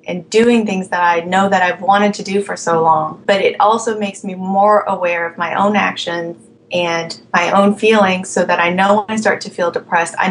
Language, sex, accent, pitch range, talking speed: English, female, American, 175-205 Hz, 235 wpm